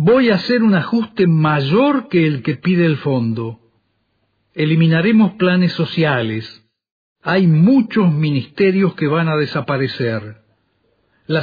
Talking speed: 120 wpm